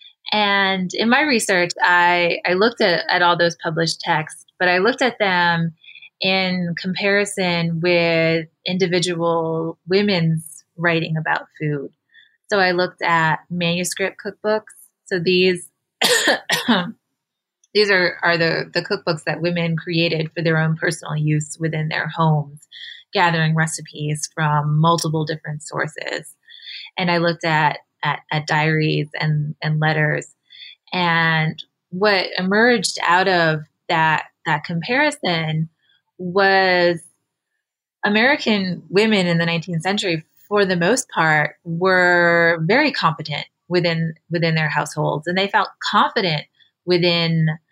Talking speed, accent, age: 125 wpm, American, 20-39